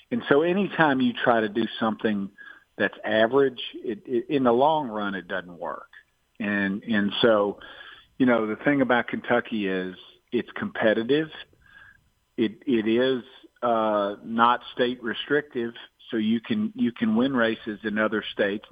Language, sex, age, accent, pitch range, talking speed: English, male, 50-69, American, 105-130 Hz, 155 wpm